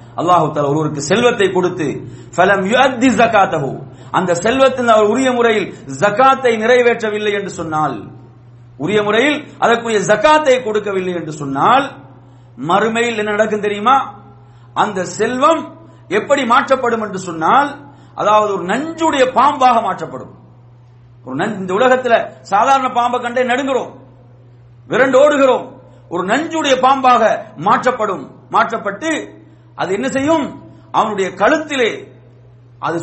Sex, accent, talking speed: male, Indian, 95 wpm